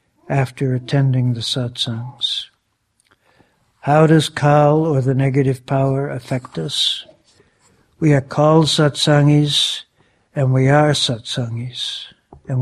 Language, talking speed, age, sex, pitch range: English, 105 wpm, 60-79, male, 130-150 Hz